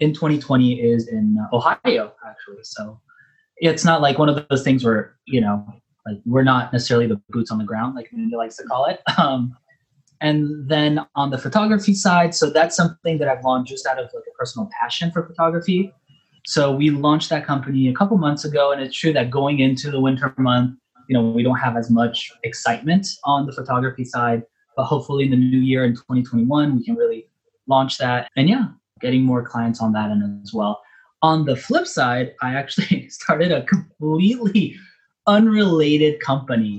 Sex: male